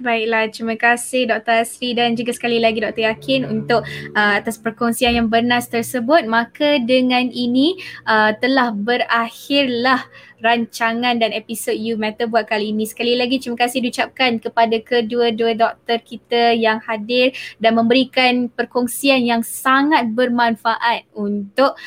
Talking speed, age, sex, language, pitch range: 135 wpm, 10-29, female, English, 220-255 Hz